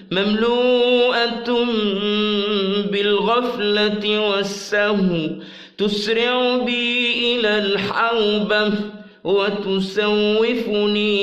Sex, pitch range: male, 195-215 Hz